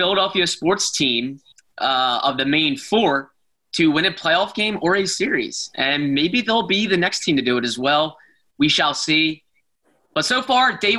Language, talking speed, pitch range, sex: English, 190 wpm, 145-180 Hz, male